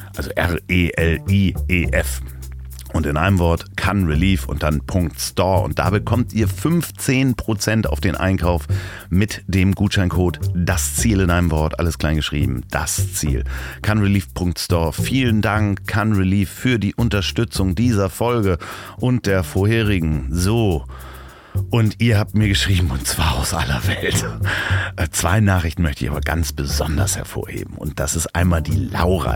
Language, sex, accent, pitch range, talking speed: German, male, German, 80-105 Hz, 140 wpm